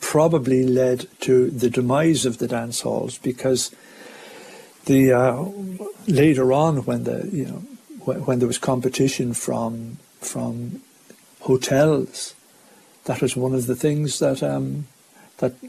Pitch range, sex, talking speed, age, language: 125-140 Hz, male, 135 wpm, 60-79, English